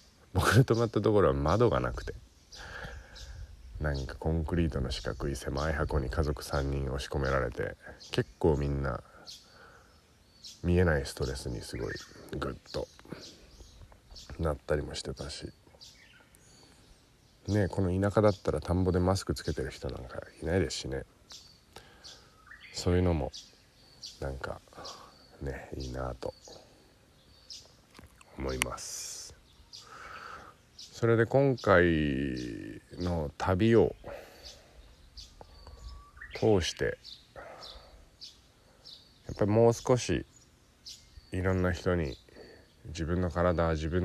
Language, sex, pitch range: Japanese, male, 70-90 Hz